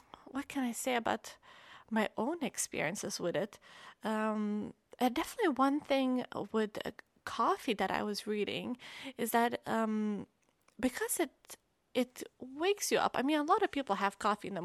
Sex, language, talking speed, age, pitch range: female, English, 170 wpm, 30-49, 195-265 Hz